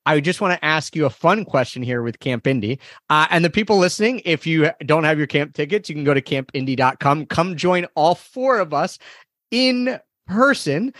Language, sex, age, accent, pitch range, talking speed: English, male, 30-49, American, 130-185 Hz, 205 wpm